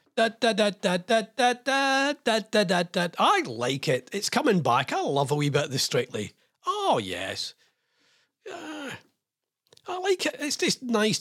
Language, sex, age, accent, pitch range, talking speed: English, male, 40-59, British, 135-195 Hz, 165 wpm